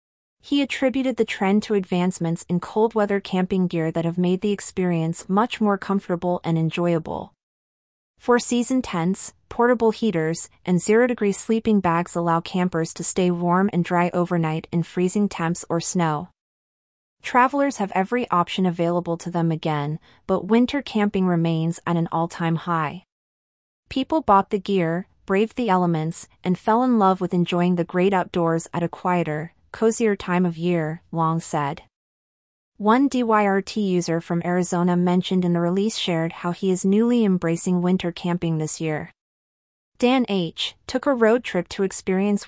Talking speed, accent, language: 160 wpm, American, English